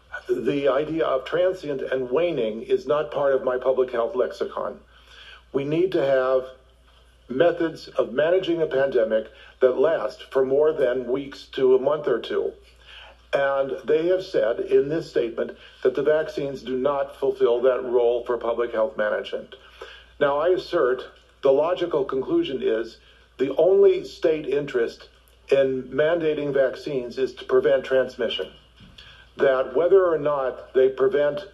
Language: English